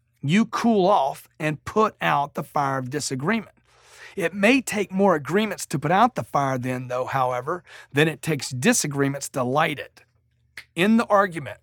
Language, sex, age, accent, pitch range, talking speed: English, male, 40-59, American, 135-200 Hz, 170 wpm